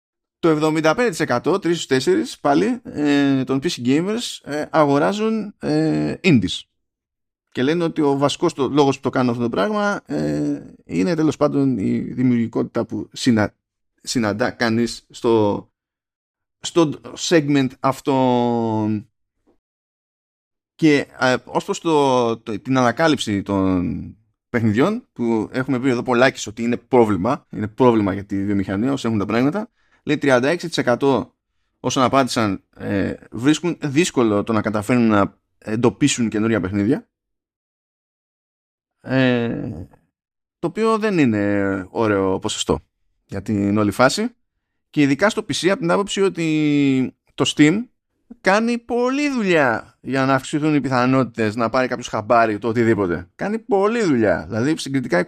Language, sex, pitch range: Greek, male, 110-160 Hz